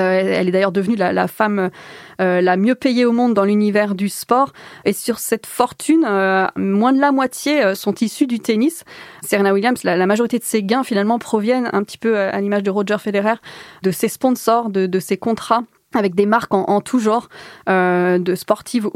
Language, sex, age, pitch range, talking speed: French, female, 20-39, 200-240 Hz, 205 wpm